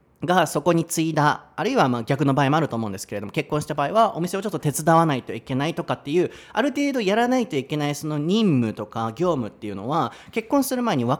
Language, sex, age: Japanese, male, 30-49